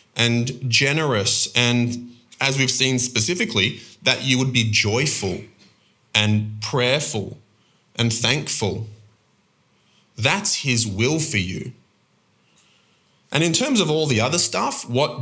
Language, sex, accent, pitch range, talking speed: English, male, Australian, 110-135 Hz, 120 wpm